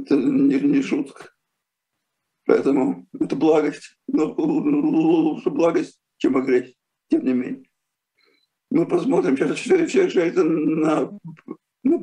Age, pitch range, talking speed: 50-69, 250-350 Hz, 105 wpm